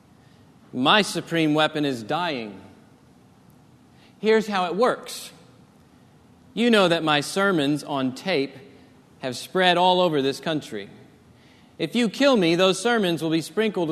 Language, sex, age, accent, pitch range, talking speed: English, male, 40-59, American, 150-190 Hz, 135 wpm